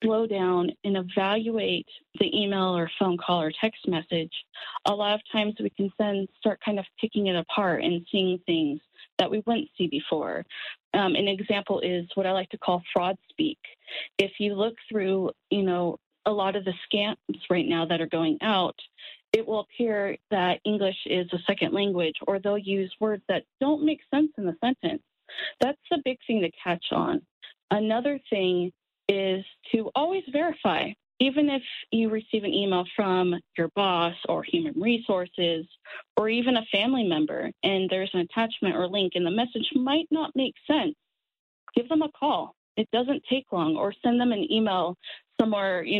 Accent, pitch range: American, 180-230 Hz